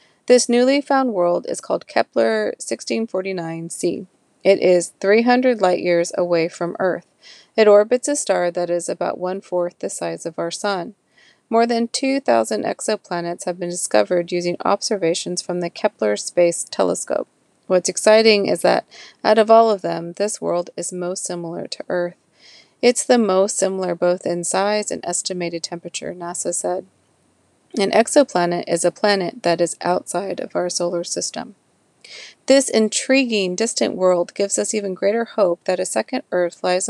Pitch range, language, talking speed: 175-215 Hz, English, 155 wpm